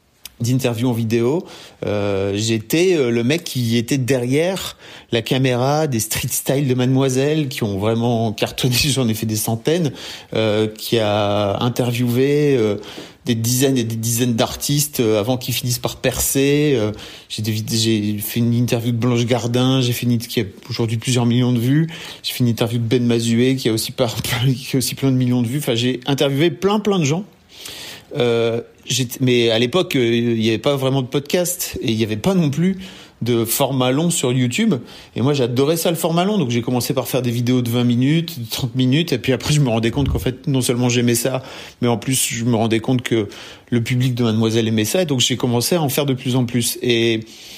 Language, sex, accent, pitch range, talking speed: French, male, French, 115-140 Hz, 215 wpm